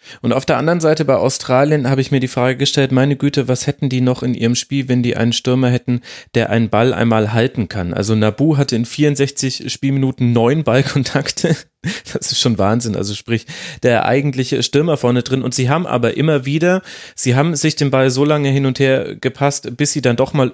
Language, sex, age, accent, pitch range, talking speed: German, male, 30-49, German, 115-140 Hz, 215 wpm